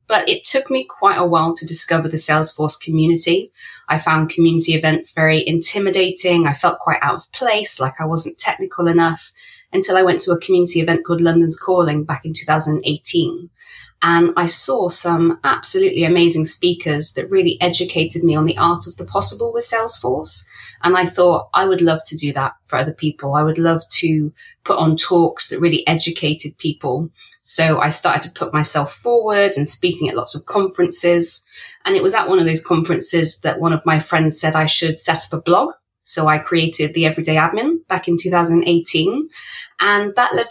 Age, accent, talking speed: 20-39, British, 190 wpm